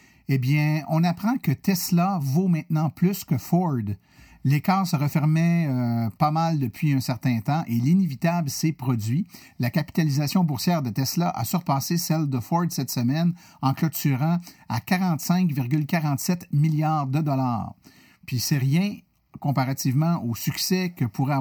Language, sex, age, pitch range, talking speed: French, male, 50-69, 130-170 Hz, 145 wpm